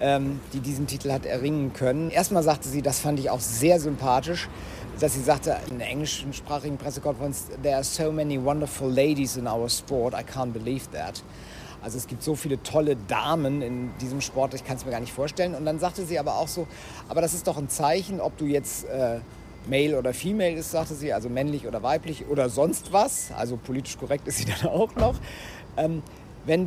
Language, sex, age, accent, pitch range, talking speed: German, male, 50-69, German, 130-155 Hz, 205 wpm